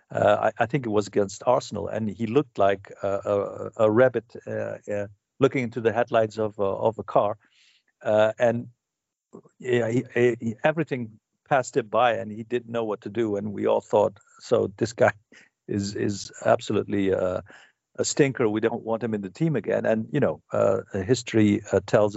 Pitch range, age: 105-120 Hz, 50-69